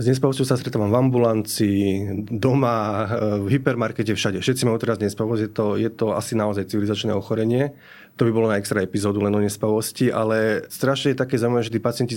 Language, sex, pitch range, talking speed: Slovak, male, 105-120 Hz, 180 wpm